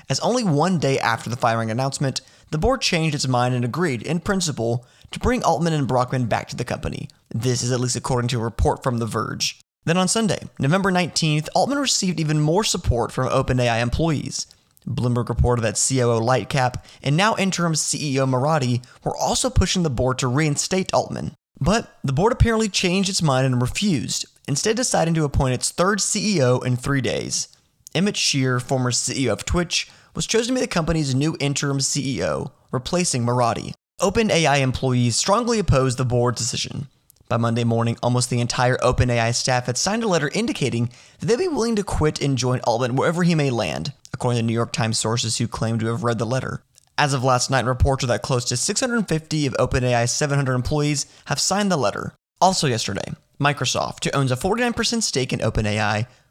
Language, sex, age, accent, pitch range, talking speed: English, male, 30-49, American, 125-165 Hz, 190 wpm